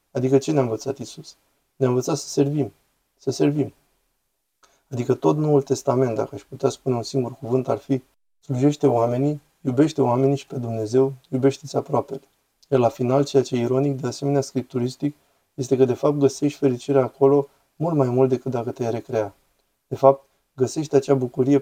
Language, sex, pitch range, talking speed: Romanian, male, 125-140 Hz, 170 wpm